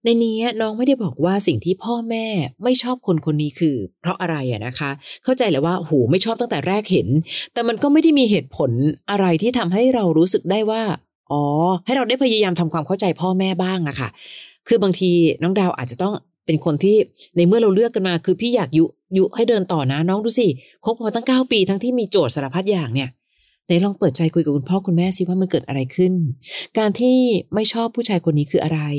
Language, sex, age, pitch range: Thai, female, 30-49, 155-200 Hz